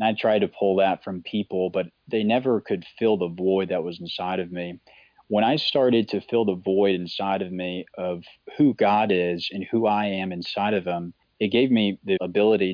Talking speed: 210 wpm